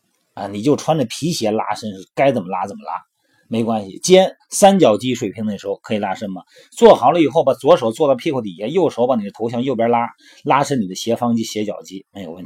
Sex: male